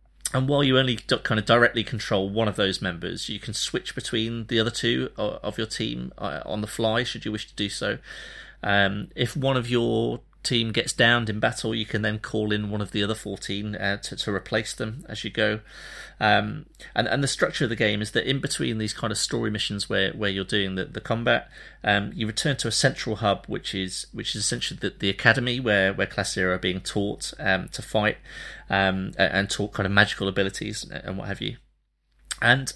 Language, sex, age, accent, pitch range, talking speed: English, male, 30-49, British, 95-115 Hz, 220 wpm